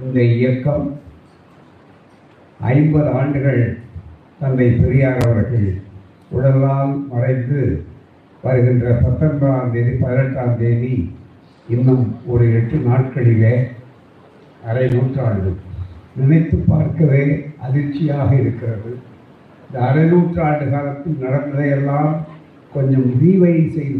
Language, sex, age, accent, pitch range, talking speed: Tamil, male, 60-79, native, 125-155 Hz, 85 wpm